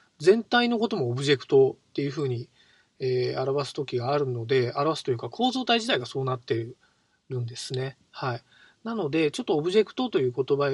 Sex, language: male, Japanese